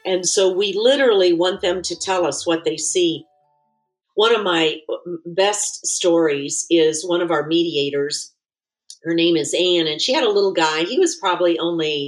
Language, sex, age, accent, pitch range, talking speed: English, female, 50-69, American, 160-195 Hz, 180 wpm